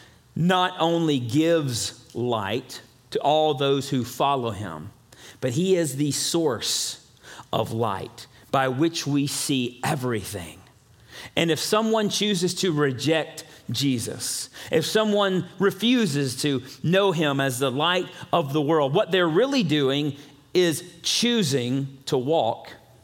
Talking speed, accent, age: 130 wpm, American, 40-59